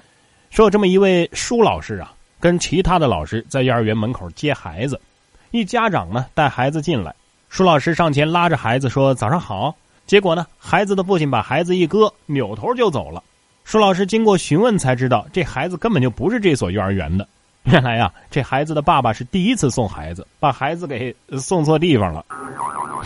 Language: Chinese